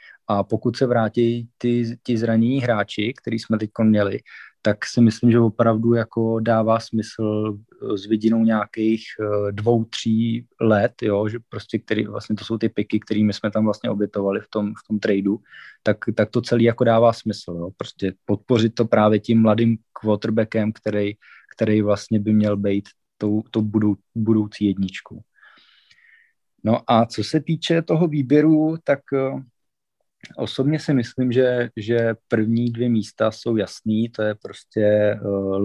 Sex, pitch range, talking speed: male, 105-120 Hz, 150 wpm